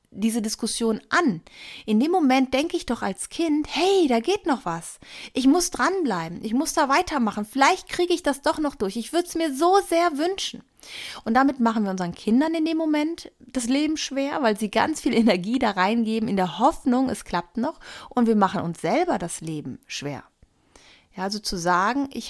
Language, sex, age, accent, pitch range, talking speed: German, female, 30-49, German, 200-265 Hz, 200 wpm